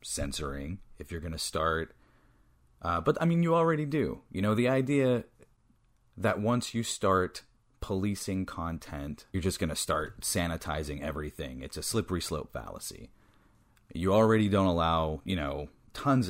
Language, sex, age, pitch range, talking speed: English, male, 30-49, 80-105 Hz, 155 wpm